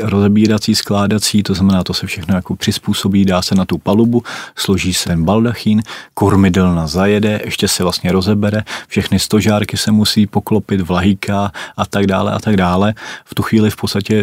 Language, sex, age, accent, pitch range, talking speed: Czech, male, 30-49, native, 95-105 Hz, 175 wpm